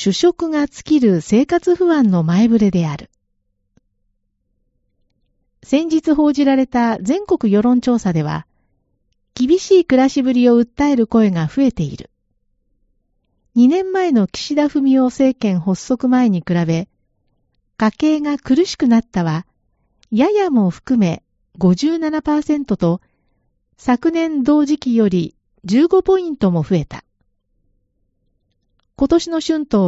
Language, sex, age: Japanese, female, 40-59